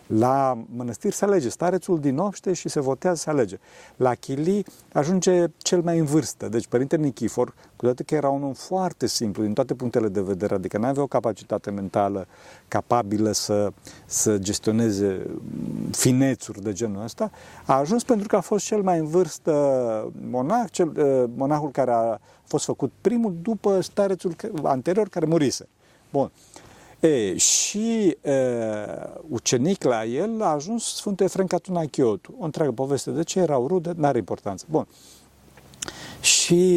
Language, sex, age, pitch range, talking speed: Romanian, male, 50-69, 115-170 Hz, 155 wpm